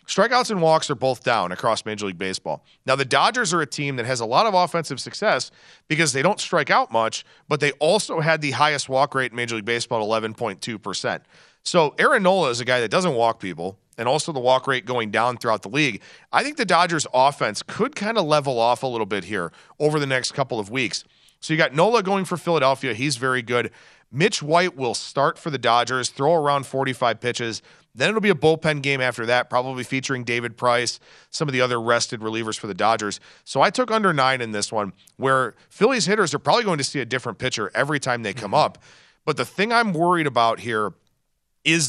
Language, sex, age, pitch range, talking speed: English, male, 40-59, 120-155 Hz, 225 wpm